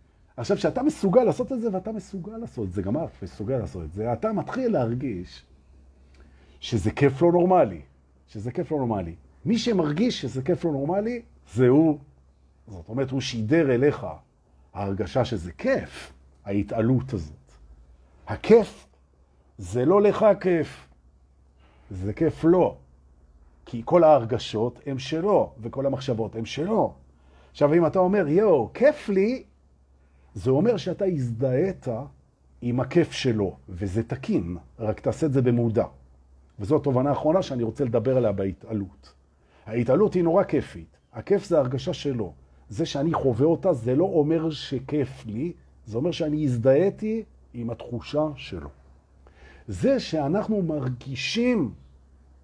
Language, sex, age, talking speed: Hebrew, male, 50-69, 130 wpm